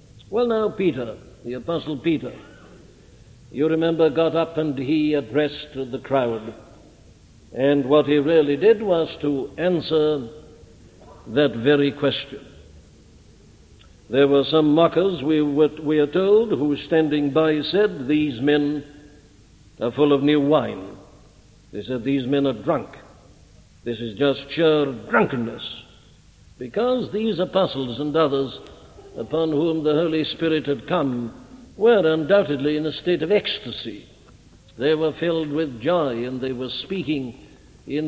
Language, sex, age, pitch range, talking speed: English, male, 60-79, 135-165 Hz, 135 wpm